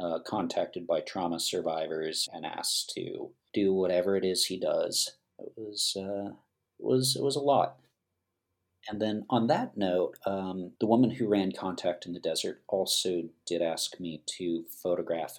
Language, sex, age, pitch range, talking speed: English, male, 40-59, 85-115 Hz, 170 wpm